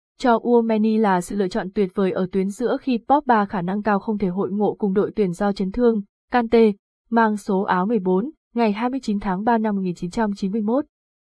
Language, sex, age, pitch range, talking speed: Vietnamese, female, 20-39, 195-230 Hz, 205 wpm